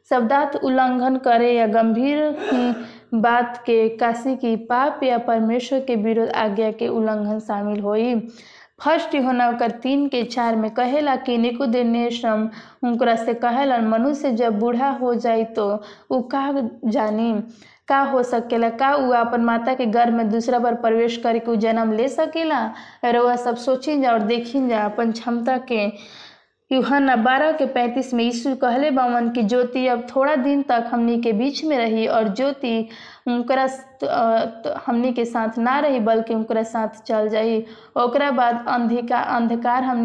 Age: 20-39